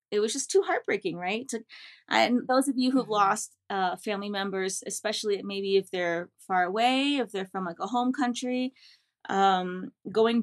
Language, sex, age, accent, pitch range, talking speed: English, female, 30-49, American, 190-235 Hz, 175 wpm